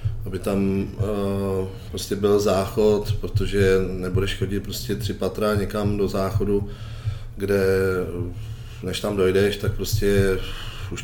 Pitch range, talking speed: 95-105 Hz, 120 wpm